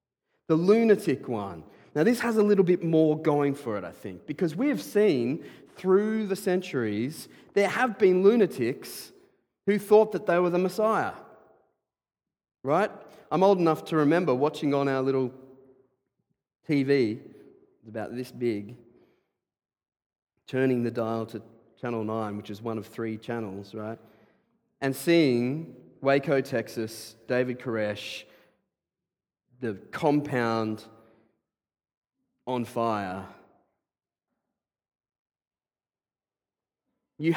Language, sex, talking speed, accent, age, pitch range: English, male, 115 wpm, Australian, 30-49, 120-180 Hz